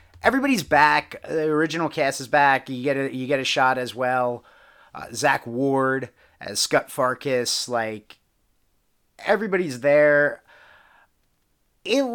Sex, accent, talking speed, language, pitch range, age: male, American, 130 wpm, English, 120-155 Hz, 30-49